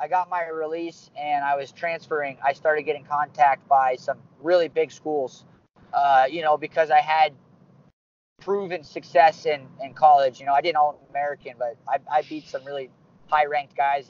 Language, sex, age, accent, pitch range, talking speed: English, male, 30-49, American, 140-170 Hz, 185 wpm